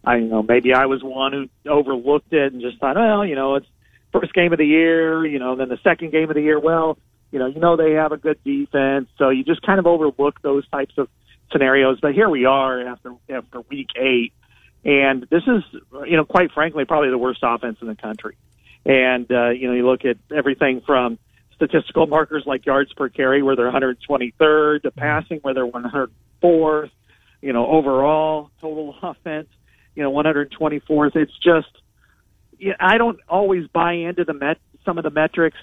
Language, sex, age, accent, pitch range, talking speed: English, male, 40-59, American, 130-170 Hz, 200 wpm